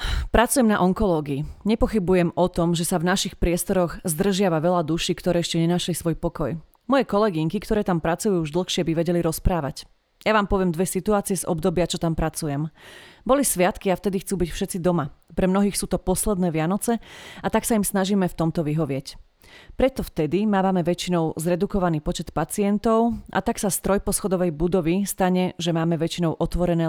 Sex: female